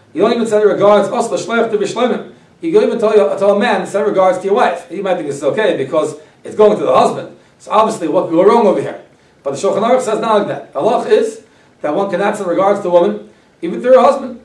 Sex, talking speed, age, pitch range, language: male, 265 wpm, 40-59, 180-225 Hz, English